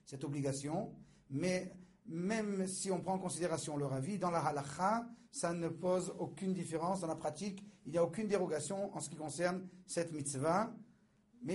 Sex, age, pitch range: male, 50-69, 150-190 Hz